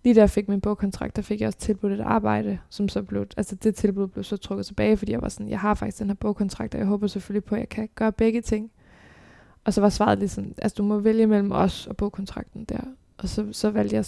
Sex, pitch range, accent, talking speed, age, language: female, 185-220 Hz, native, 270 wpm, 20-39, Danish